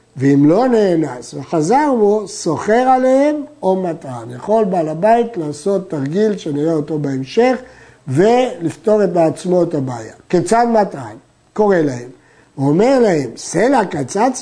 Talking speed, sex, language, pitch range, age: 125 wpm, male, Hebrew, 165-235 Hz, 50-69